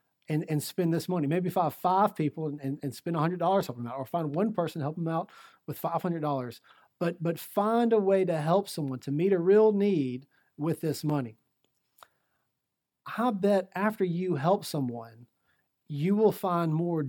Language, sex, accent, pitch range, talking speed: English, male, American, 140-185 Hz, 185 wpm